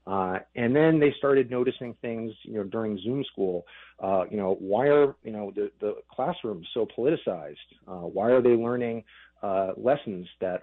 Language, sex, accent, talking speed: English, male, American, 180 wpm